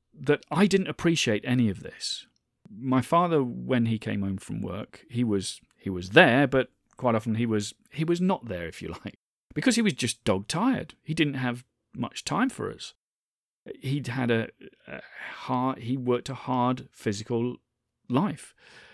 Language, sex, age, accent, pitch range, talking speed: English, male, 40-59, British, 105-155 Hz, 175 wpm